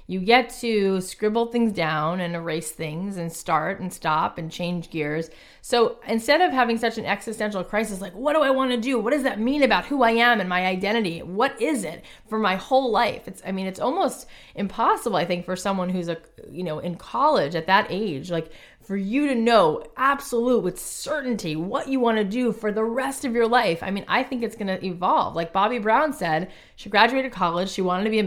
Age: 20-39